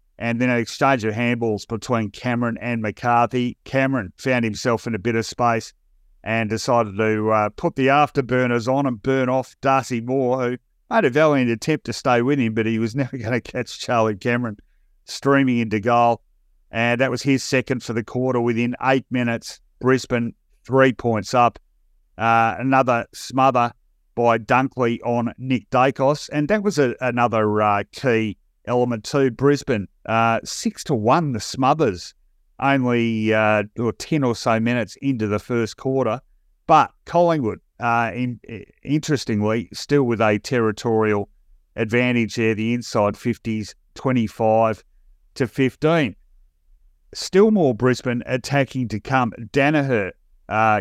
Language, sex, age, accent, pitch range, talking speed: English, male, 50-69, Australian, 110-130 Hz, 150 wpm